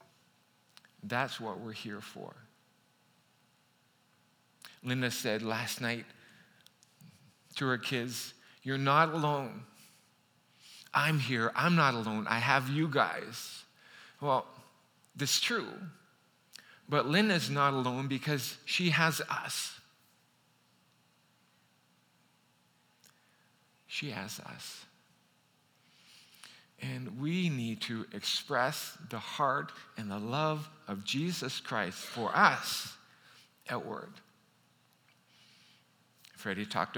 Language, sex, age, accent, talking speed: English, male, 50-69, American, 95 wpm